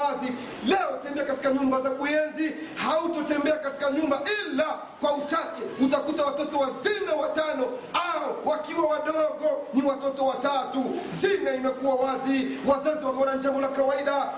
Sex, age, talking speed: male, 40-59, 135 wpm